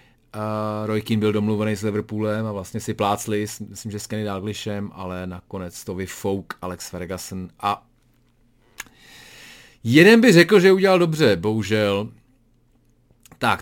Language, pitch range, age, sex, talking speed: Czech, 105-150 Hz, 30-49, male, 135 wpm